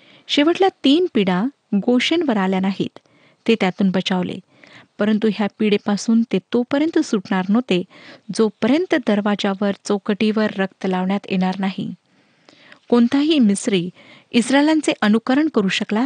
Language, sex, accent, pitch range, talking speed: Marathi, female, native, 200-260 Hz, 110 wpm